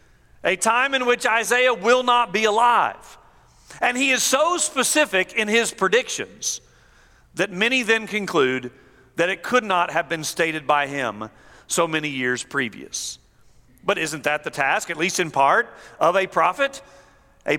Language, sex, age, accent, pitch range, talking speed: English, male, 50-69, American, 190-250 Hz, 160 wpm